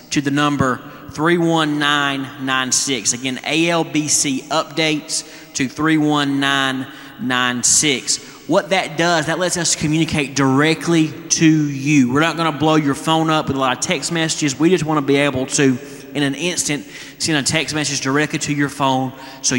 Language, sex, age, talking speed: English, male, 30-49, 185 wpm